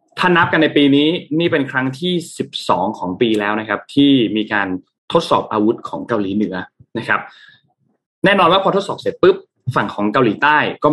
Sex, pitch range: male, 105-145 Hz